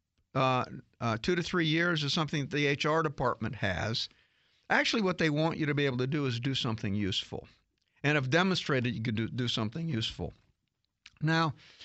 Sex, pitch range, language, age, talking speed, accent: male, 125-160 Hz, English, 50-69, 185 wpm, American